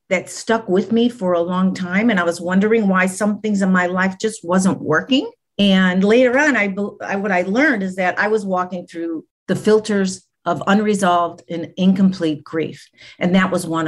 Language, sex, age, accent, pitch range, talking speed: English, female, 50-69, American, 180-240 Hz, 200 wpm